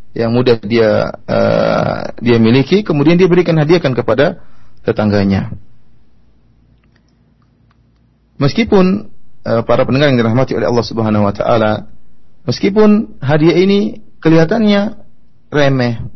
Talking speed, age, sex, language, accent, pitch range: 105 wpm, 30-49, male, Indonesian, native, 115-140 Hz